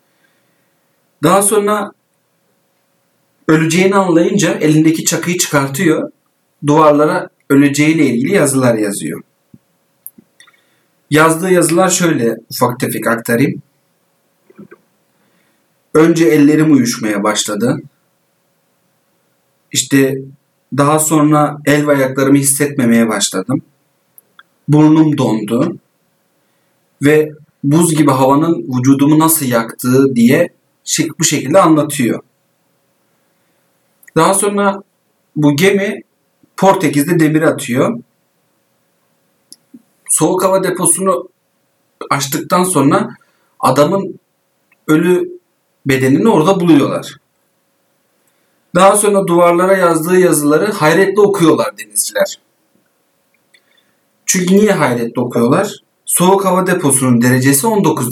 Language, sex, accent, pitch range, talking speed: Turkish, male, native, 140-185 Hz, 80 wpm